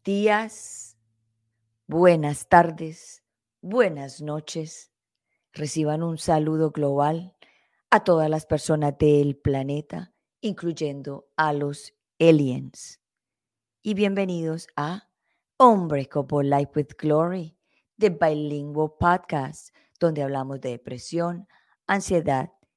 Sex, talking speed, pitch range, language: female, 90 wpm, 145-175 Hz, Spanish